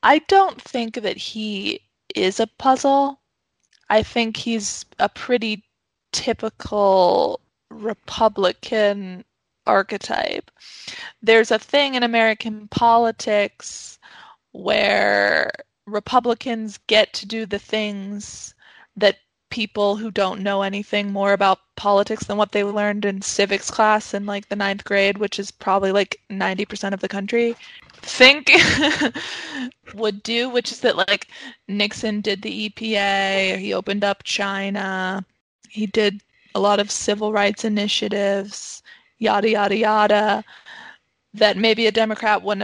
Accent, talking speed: American, 125 wpm